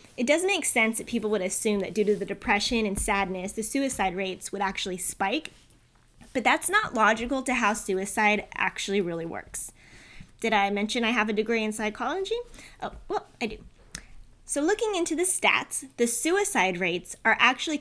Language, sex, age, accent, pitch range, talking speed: English, female, 20-39, American, 195-255 Hz, 180 wpm